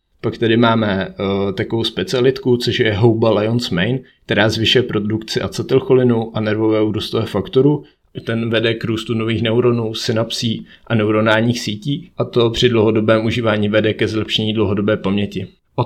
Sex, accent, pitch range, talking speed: male, native, 105-115 Hz, 150 wpm